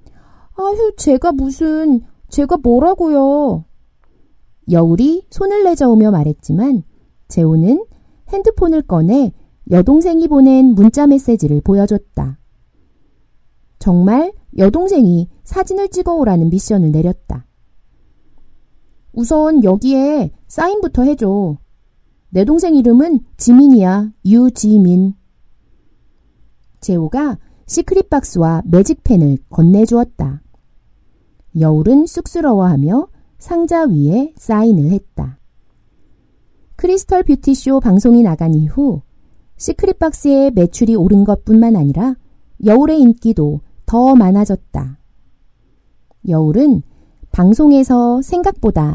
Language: Korean